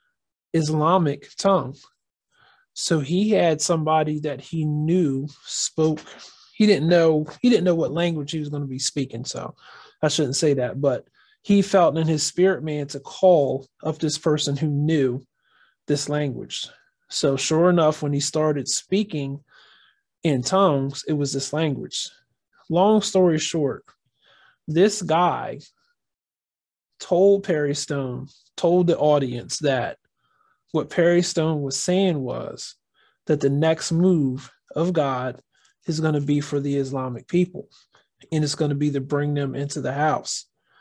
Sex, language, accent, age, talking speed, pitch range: male, English, American, 20-39, 150 wpm, 140-170 Hz